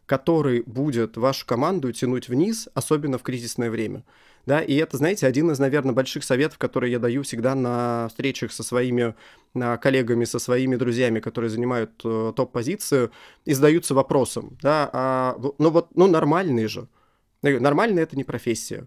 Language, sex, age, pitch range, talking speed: Russian, male, 20-39, 125-145 Hz, 155 wpm